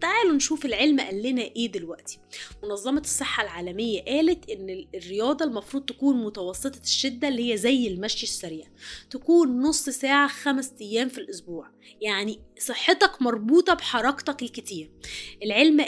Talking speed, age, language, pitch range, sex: 130 wpm, 20-39, Arabic, 225-295 Hz, female